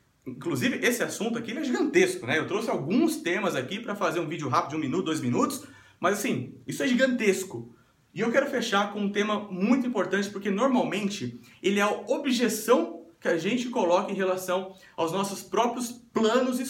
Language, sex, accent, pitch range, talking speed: Portuguese, male, Brazilian, 175-235 Hz, 185 wpm